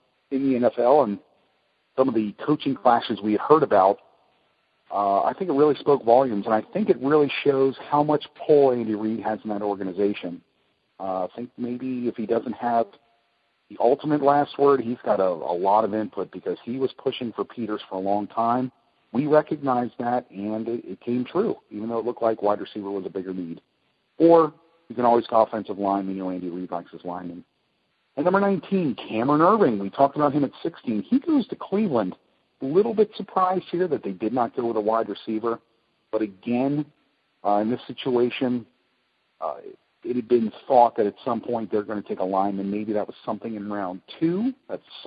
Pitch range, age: 100-135 Hz, 40-59